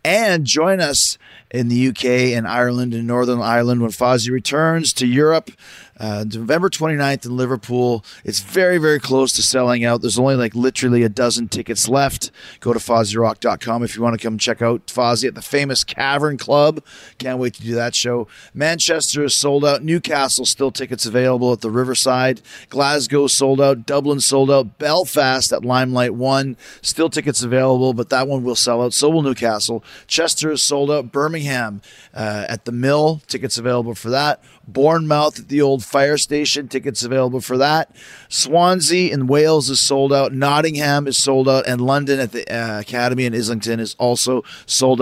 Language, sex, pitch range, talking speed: English, male, 120-145 Hz, 180 wpm